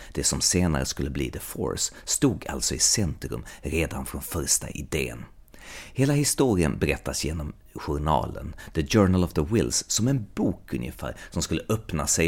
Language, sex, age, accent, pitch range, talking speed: Swedish, male, 30-49, native, 80-110 Hz, 160 wpm